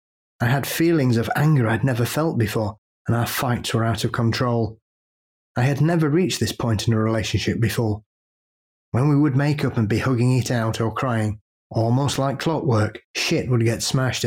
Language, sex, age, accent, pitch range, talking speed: English, male, 30-49, British, 110-135 Hz, 190 wpm